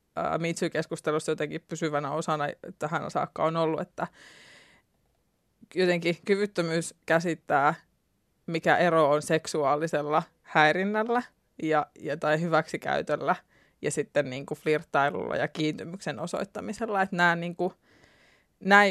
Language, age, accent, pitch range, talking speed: Finnish, 20-39, native, 155-175 Hz, 105 wpm